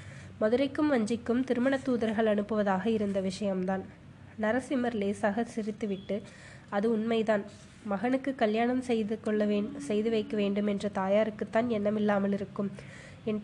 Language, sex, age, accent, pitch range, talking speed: Tamil, female, 20-39, native, 200-230 Hz, 105 wpm